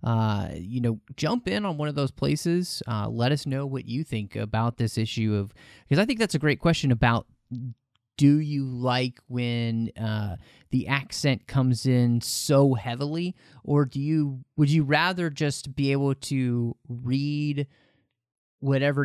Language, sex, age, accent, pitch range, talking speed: English, male, 30-49, American, 110-140 Hz, 165 wpm